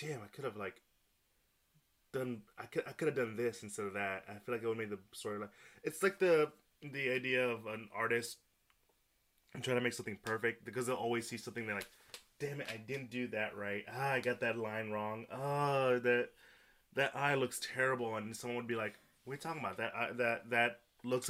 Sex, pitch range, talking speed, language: male, 105-130 Hz, 225 wpm, English